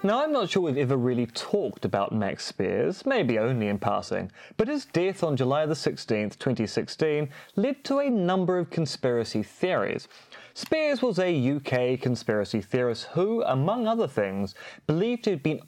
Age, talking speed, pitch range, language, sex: 30-49, 165 wpm, 120-195 Hz, English, male